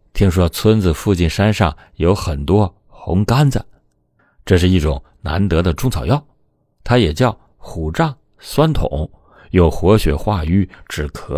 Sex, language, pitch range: male, Chinese, 80-105 Hz